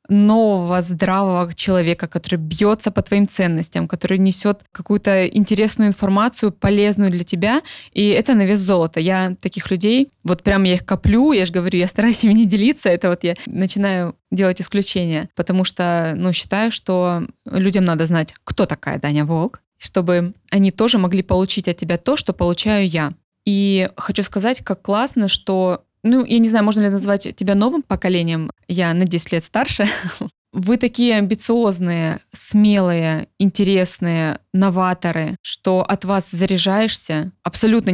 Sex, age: female, 20-39